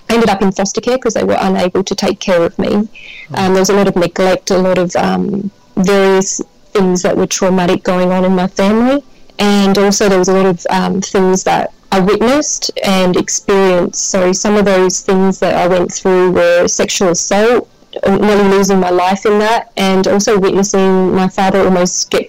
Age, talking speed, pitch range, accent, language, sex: 20-39, 200 wpm, 185-210 Hz, Australian, English, female